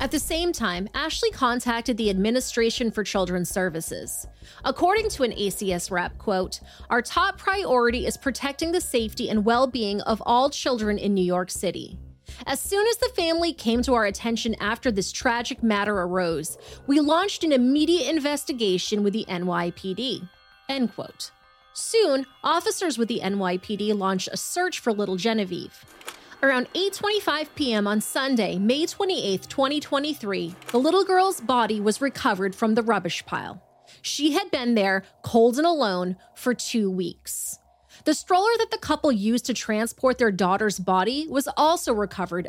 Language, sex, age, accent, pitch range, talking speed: English, female, 30-49, American, 195-265 Hz, 155 wpm